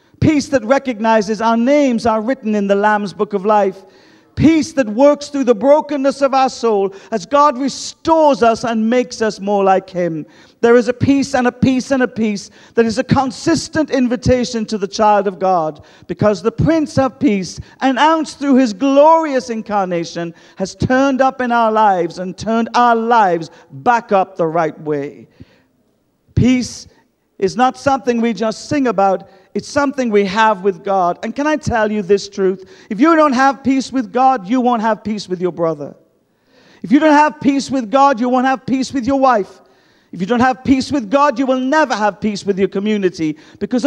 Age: 50-69